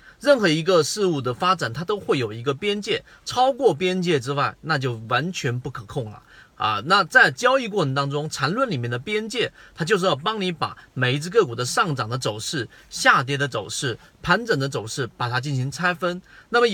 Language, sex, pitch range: Chinese, male, 135-190 Hz